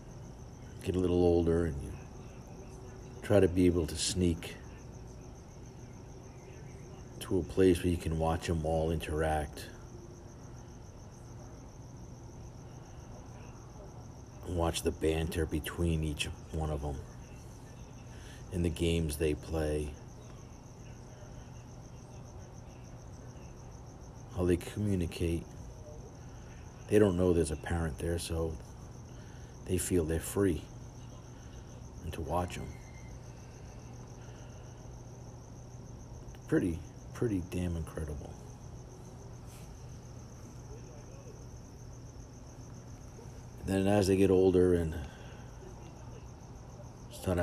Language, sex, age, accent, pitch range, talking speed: English, male, 50-69, American, 85-120 Hz, 80 wpm